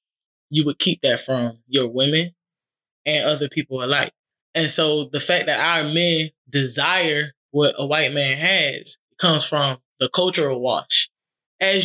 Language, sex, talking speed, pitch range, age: English, male, 150 wpm, 145-170 Hz, 20-39